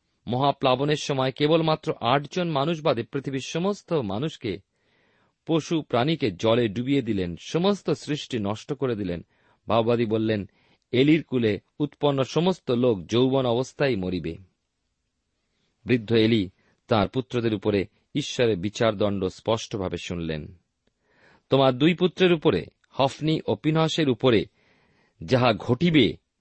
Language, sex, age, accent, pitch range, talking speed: Bengali, male, 50-69, native, 105-150 Hz, 105 wpm